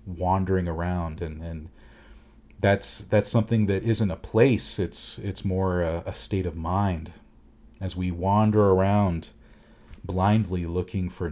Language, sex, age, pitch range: English, male, 40-59, 90-110 Hz